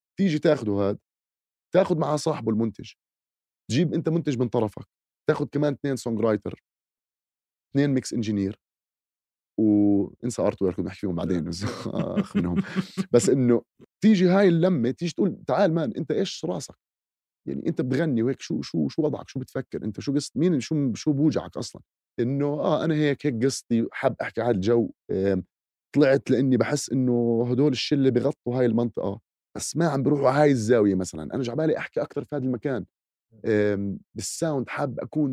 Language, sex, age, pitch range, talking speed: Arabic, male, 30-49, 105-150 Hz, 160 wpm